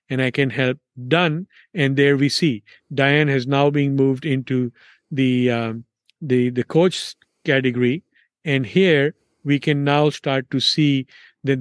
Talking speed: 155 wpm